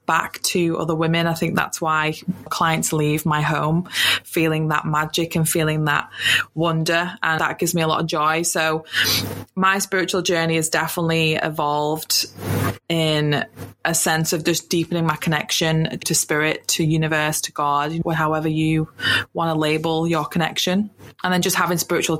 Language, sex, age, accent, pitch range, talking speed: English, female, 20-39, British, 160-185 Hz, 160 wpm